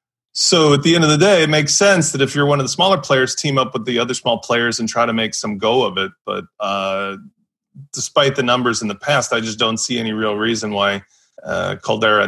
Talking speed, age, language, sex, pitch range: 250 wpm, 30-49, English, male, 130-165 Hz